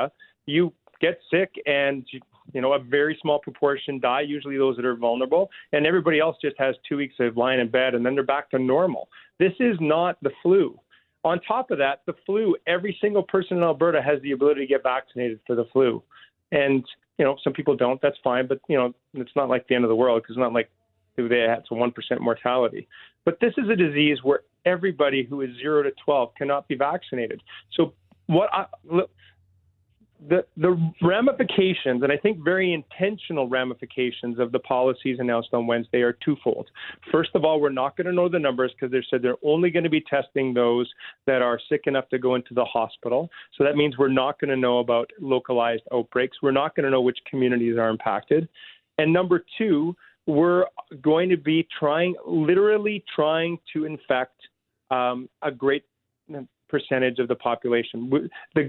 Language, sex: English, male